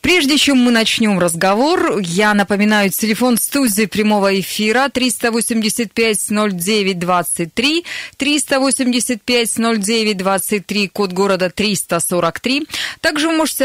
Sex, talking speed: female, 85 wpm